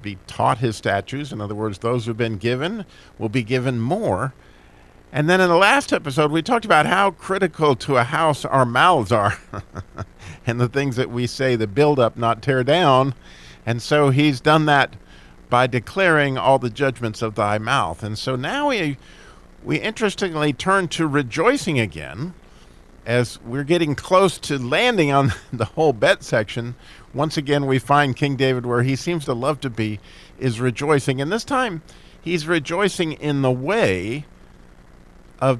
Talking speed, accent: 170 wpm, American